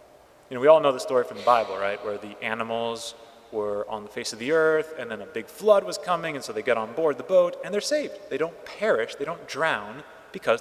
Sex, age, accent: male, 30-49, American